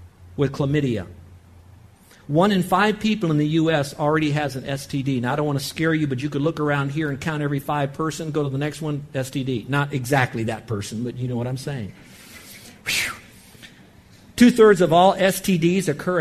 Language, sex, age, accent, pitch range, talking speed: English, male, 50-69, American, 120-145 Hz, 195 wpm